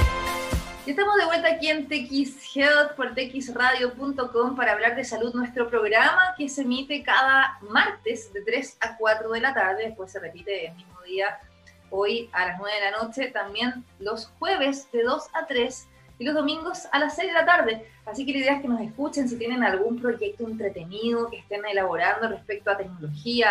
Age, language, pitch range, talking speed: 20-39, Spanish, 210-275 Hz, 195 wpm